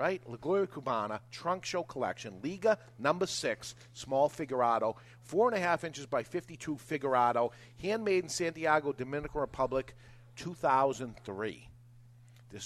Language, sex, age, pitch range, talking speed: English, male, 50-69, 115-135 Hz, 130 wpm